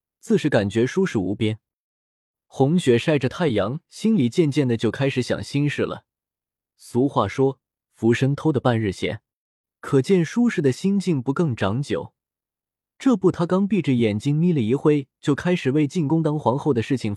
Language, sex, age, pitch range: Chinese, male, 20-39, 110-160 Hz